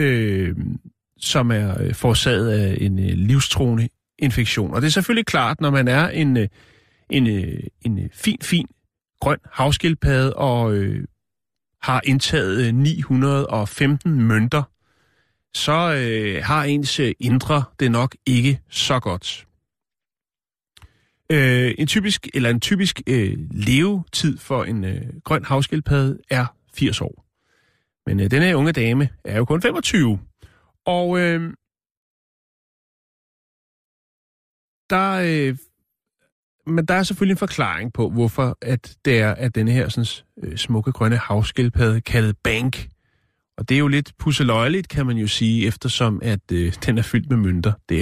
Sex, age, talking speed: male, 30-49, 130 wpm